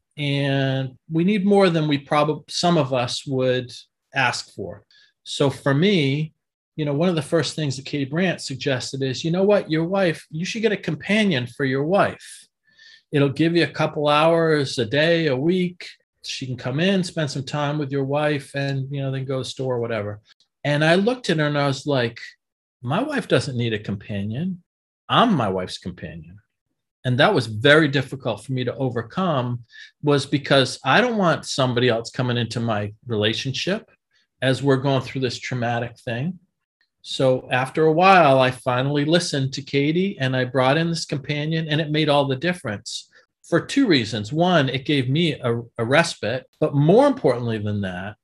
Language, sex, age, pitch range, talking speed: English, male, 40-59, 130-160 Hz, 190 wpm